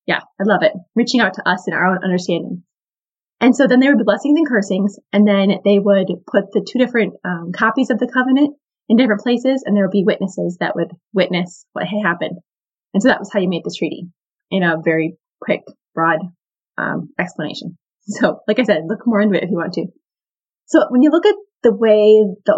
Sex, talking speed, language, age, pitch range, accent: female, 225 wpm, English, 20-39, 195-245 Hz, American